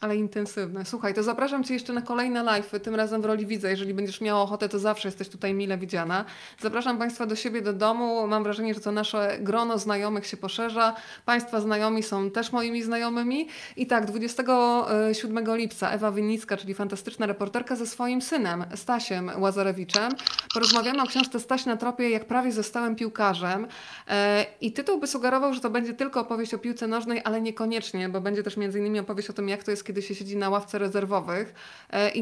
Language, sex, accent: Polish, female, native